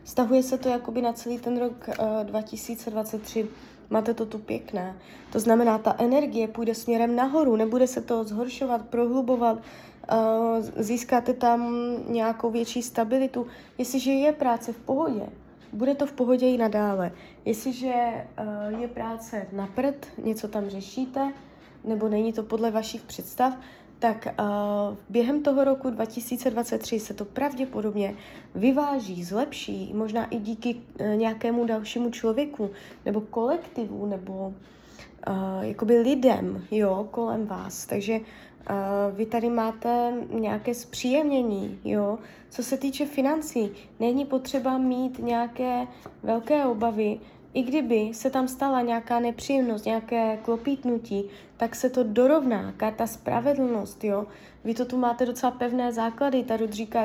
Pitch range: 220-255 Hz